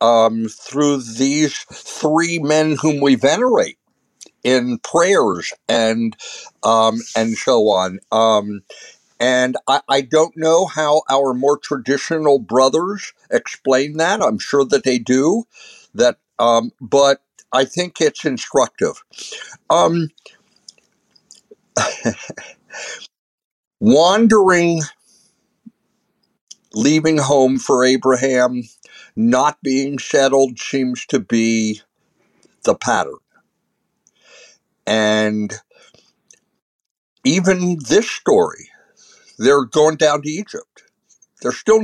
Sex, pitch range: male, 120-160 Hz